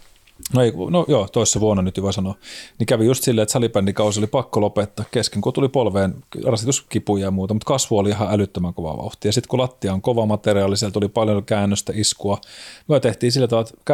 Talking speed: 210 wpm